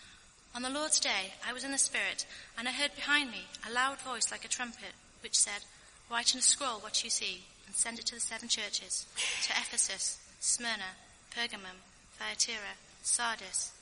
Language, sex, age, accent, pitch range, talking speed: English, female, 30-49, British, 225-275 Hz, 180 wpm